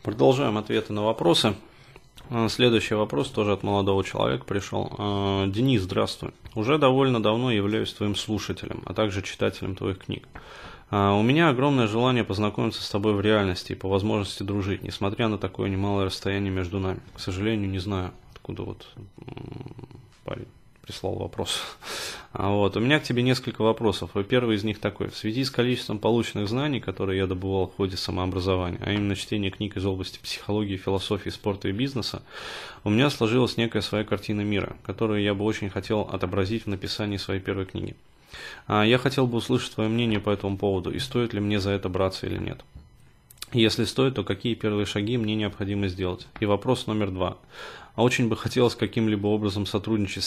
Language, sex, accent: Russian, male, native